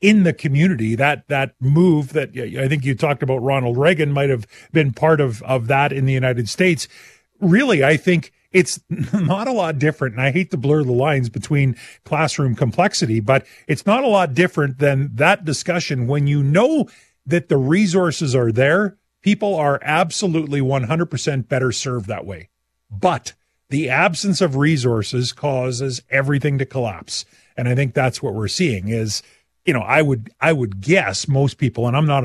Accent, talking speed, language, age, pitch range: American, 180 wpm, English, 40-59, 125-160 Hz